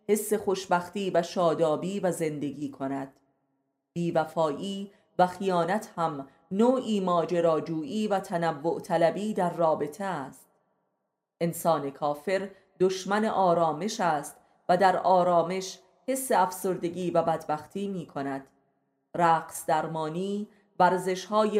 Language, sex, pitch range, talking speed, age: Persian, female, 165-200 Hz, 100 wpm, 30-49